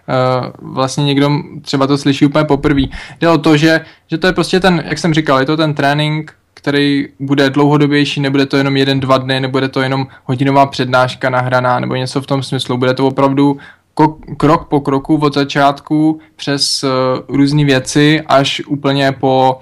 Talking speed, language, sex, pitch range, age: 175 wpm, Czech, male, 130-145 Hz, 20-39